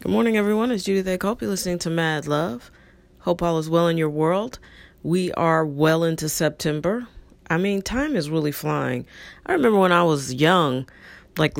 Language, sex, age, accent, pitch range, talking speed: English, female, 40-59, American, 150-190 Hz, 185 wpm